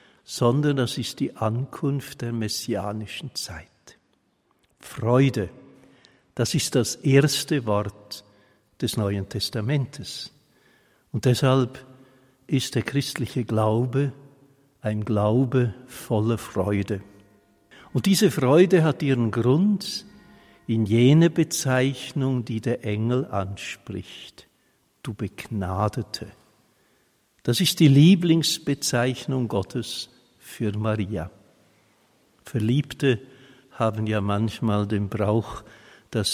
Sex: male